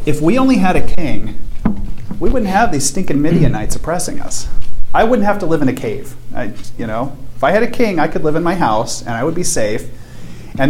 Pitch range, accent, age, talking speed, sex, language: 120-155 Hz, American, 40-59, 230 wpm, male, English